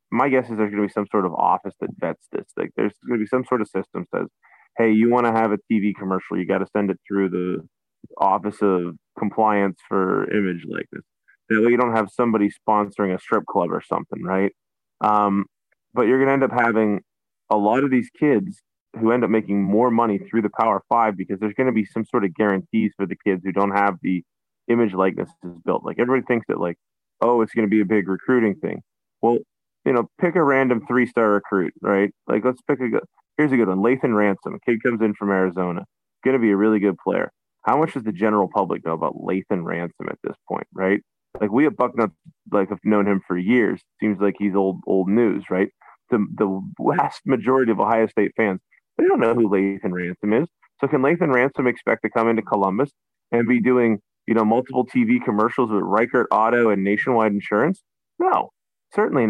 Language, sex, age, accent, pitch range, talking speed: English, male, 20-39, American, 100-120 Hz, 220 wpm